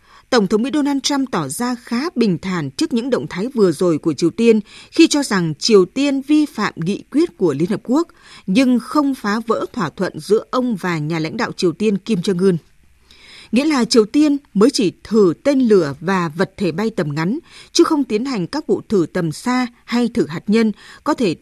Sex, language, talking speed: female, Vietnamese, 220 wpm